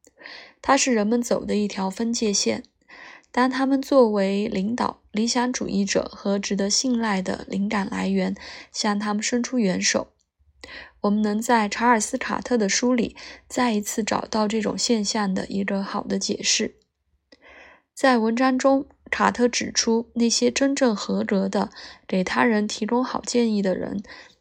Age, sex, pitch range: 20-39, female, 200-245 Hz